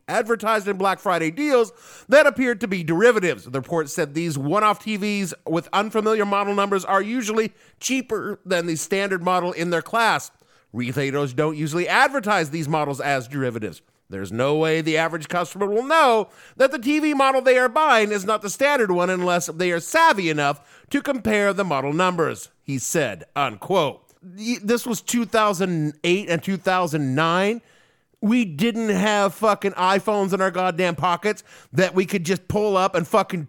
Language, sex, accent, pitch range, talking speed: English, male, American, 160-215 Hz, 165 wpm